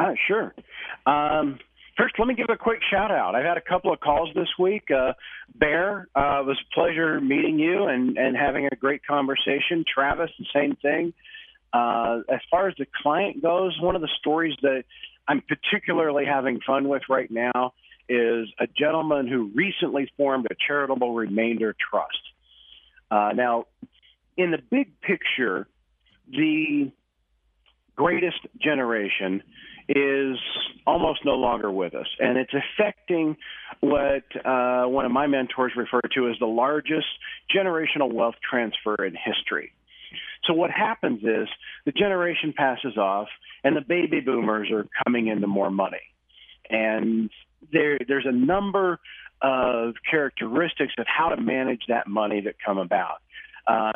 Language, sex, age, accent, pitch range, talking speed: English, male, 40-59, American, 120-170 Hz, 150 wpm